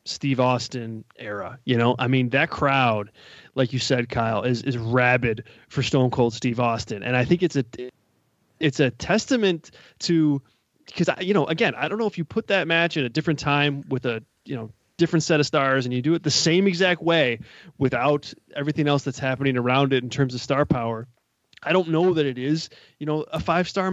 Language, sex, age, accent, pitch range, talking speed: English, male, 20-39, American, 130-160 Hz, 210 wpm